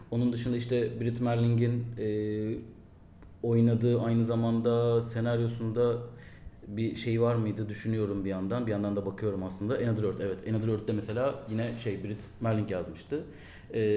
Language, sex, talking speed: Turkish, male, 140 wpm